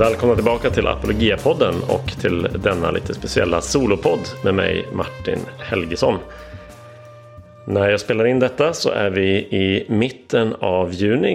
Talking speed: 140 wpm